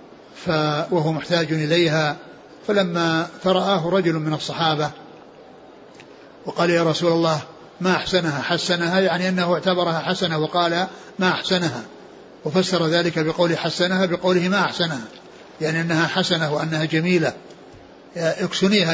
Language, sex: Arabic, male